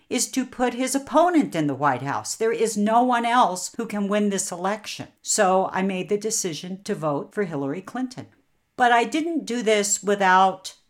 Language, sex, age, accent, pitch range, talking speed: English, female, 50-69, American, 160-210 Hz, 195 wpm